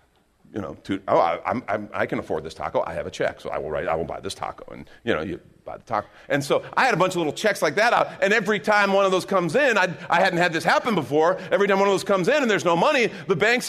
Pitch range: 140-200 Hz